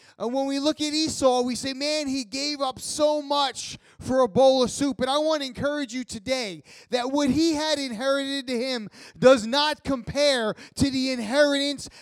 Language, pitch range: English, 250-295 Hz